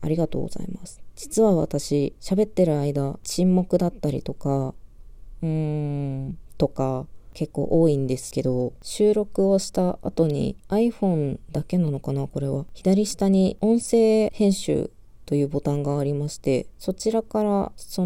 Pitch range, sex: 145-180 Hz, female